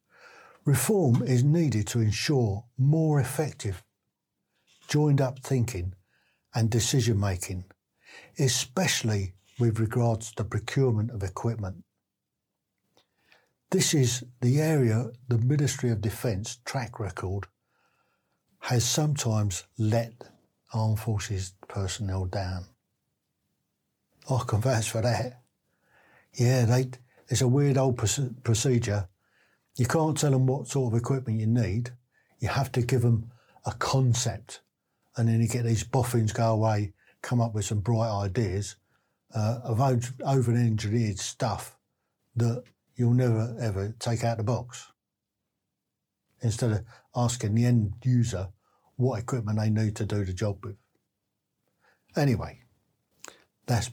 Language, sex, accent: English, male, British